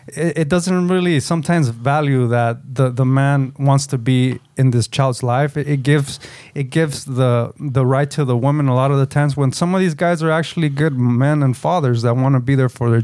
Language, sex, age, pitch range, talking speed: English, male, 20-39, 130-155 Hz, 225 wpm